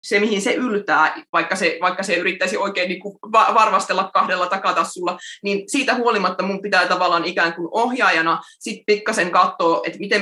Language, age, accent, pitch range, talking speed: Finnish, 20-39, native, 170-205 Hz, 160 wpm